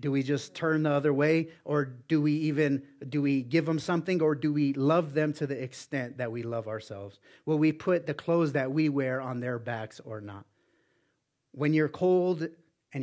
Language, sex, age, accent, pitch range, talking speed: English, male, 30-49, American, 135-165 Hz, 205 wpm